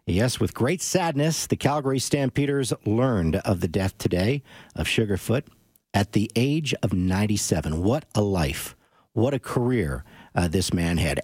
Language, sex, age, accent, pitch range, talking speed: English, male, 50-69, American, 110-145 Hz, 155 wpm